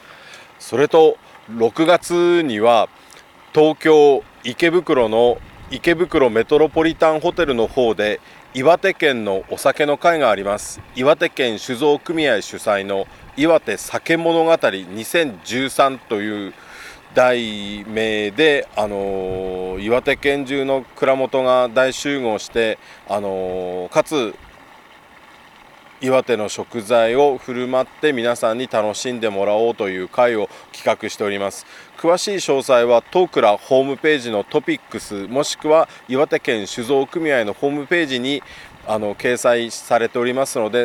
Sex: male